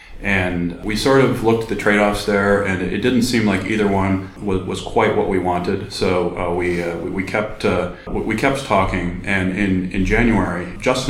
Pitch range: 90-105 Hz